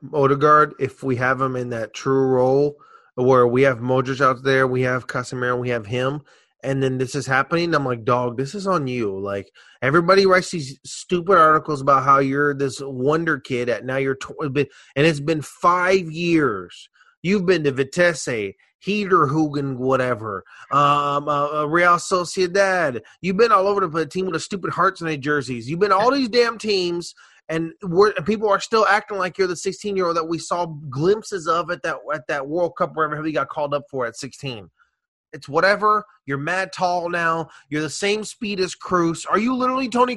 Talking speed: 190 wpm